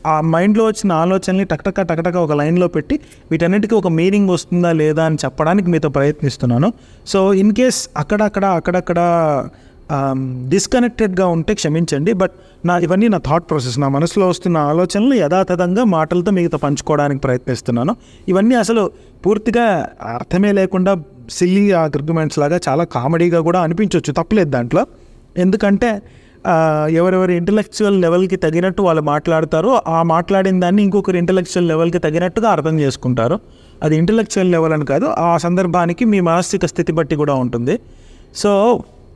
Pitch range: 150-195 Hz